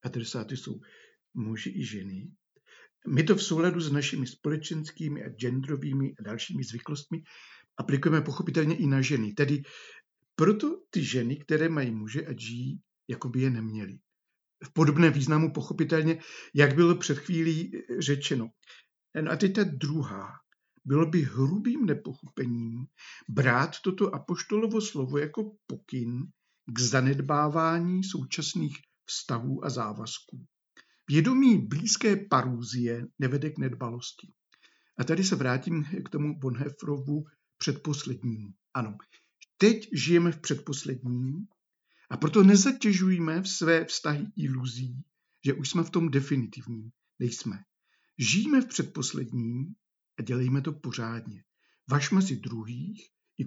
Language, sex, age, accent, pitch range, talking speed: Czech, male, 50-69, native, 130-170 Hz, 120 wpm